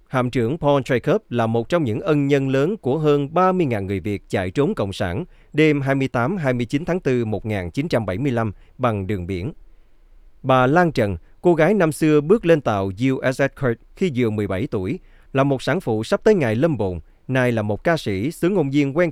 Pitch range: 105-150 Hz